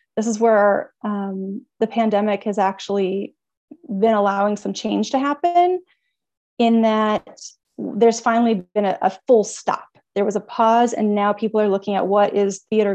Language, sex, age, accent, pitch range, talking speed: English, female, 30-49, American, 200-235 Hz, 165 wpm